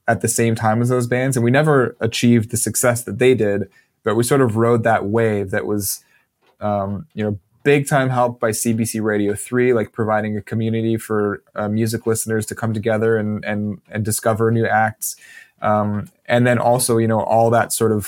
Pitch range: 105-120 Hz